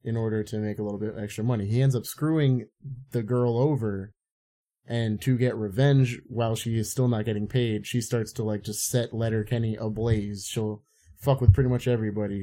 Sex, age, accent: male, 30-49, American